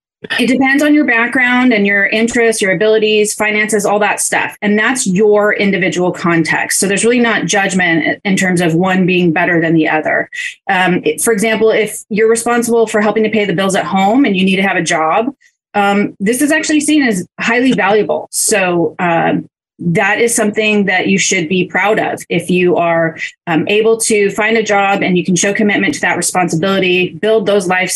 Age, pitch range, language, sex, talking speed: 30-49, 180-220 Hz, English, female, 200 wpm